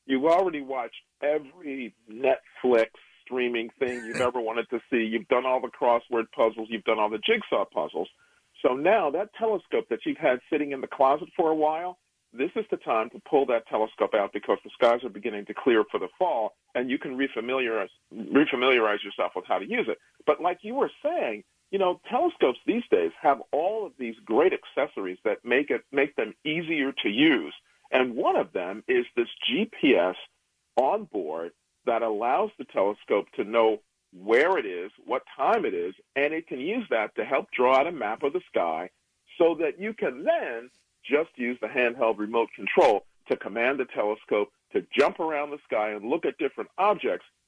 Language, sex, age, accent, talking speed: English, male, 50-69, American, 190 wpm